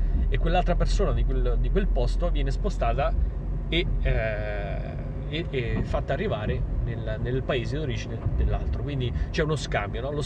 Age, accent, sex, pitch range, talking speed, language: 30-49, native, male, 95-150 Hz, 145 wpm, Italian